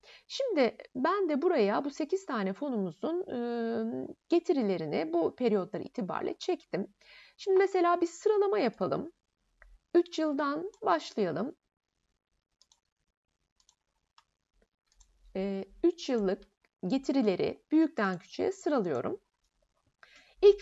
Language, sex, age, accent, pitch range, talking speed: Turkish, female, 30-49, native, 210-345 Hz, 80 wpm